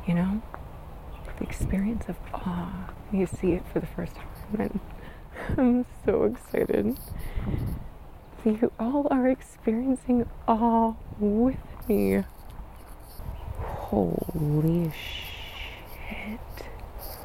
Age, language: 30-49, English